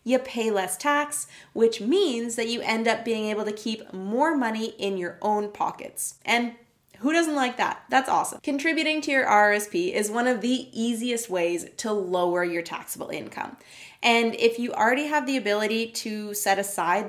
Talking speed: 185 wpm